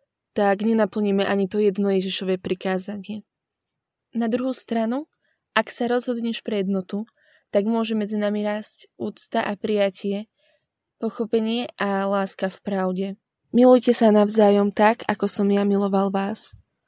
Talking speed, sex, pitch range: 130 wpm, female, 195-220 Hz